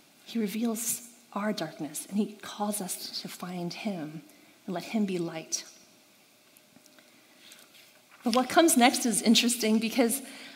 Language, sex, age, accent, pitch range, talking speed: English, female, 40-59, American, 195-270 Hz, 130 wpm